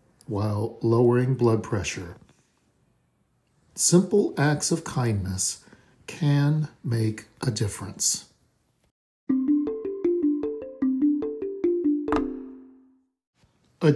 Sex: male